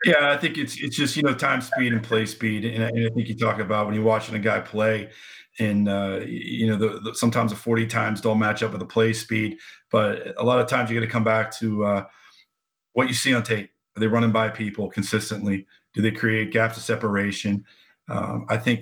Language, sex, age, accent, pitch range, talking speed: English, male, 40-59, American, 105-115 Hz, 240 wpm